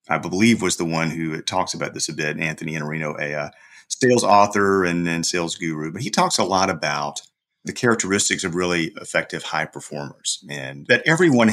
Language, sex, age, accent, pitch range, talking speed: English, male, 40-59, American, 85-120 Hz, 185 wpm